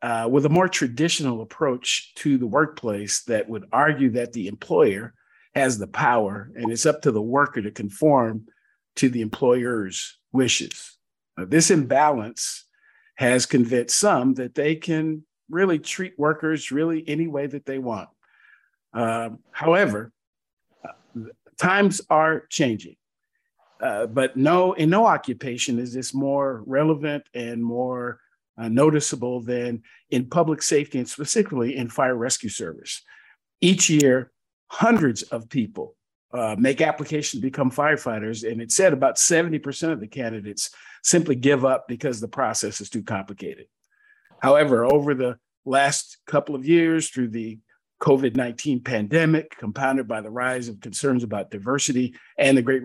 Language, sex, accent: English, male, American